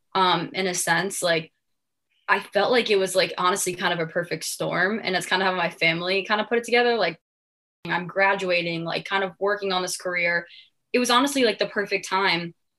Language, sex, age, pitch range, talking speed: English, female, 10-29, 170-200 Hz, 215 wpm